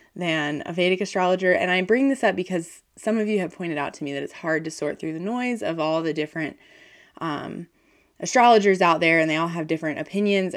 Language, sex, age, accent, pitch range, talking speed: English, female, 20-39, American, 155-215 Hz, 225 wpm